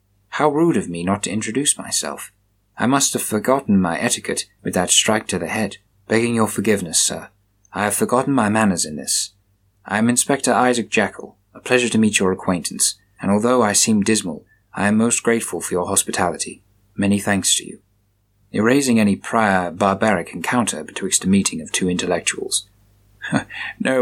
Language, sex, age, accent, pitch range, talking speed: English, male, 30-49, British, 100-120 Hz, 175 wpm